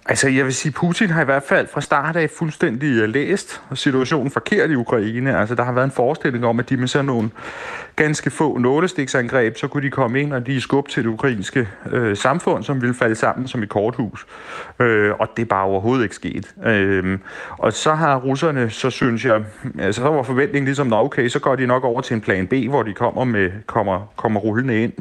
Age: 30-49